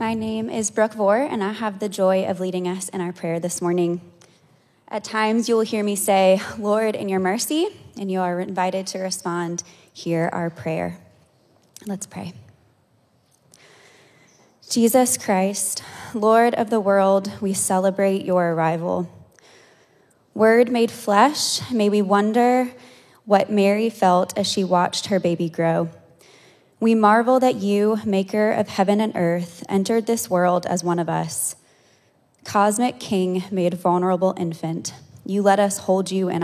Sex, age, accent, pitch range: female, 20-39, American, 180-215 Hz